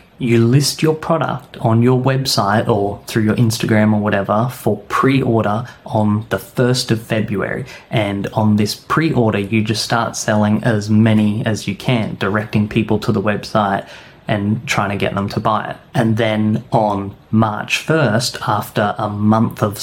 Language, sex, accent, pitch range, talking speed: English, male, Australian, 105-125 Hz, 165 wpm